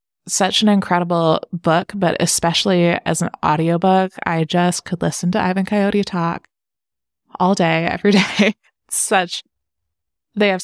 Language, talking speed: English, 135 wpm